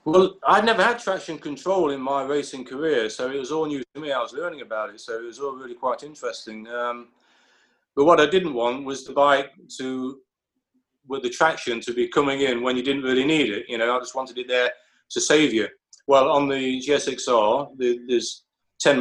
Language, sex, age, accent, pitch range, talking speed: English, male, 30-49, British, 120-150 Hz, 220 wpm